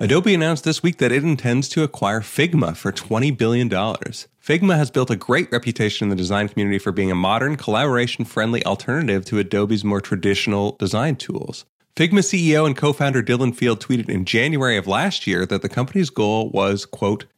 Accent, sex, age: American, male, 30-49